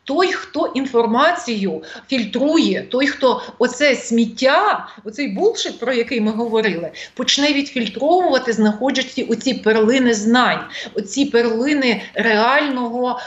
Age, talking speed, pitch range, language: 30-49, 105 wpm, 215-260 Hz, Ukrainian